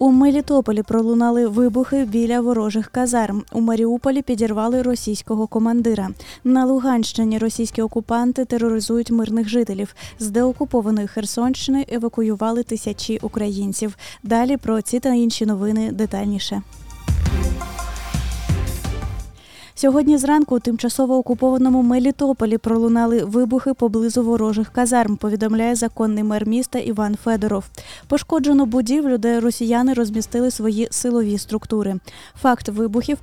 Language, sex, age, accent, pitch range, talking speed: Ukrainian, female, 20-39, native, 220-255 Hz, 105 wpm